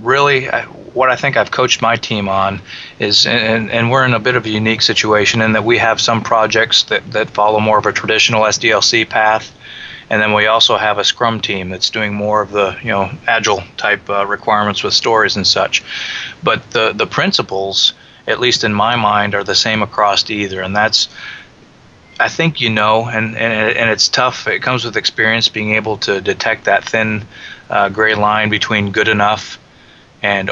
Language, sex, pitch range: English, male, 105-115 Hz